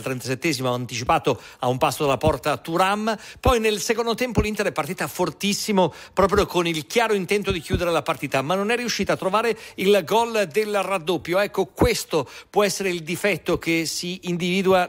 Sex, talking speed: male, 175 wpm